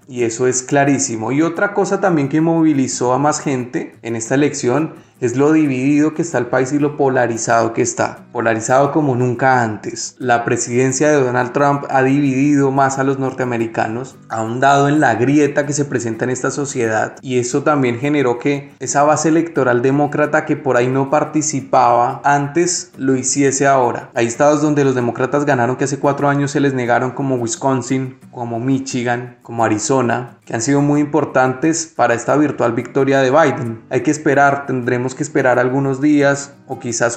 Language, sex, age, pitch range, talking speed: Spanish, male, 20-39, 125-145 Hz, 180 wpm